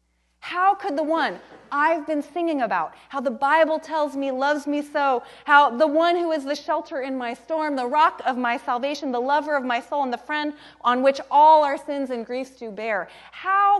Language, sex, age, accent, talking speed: English, female, 30-49, American, 215 wpm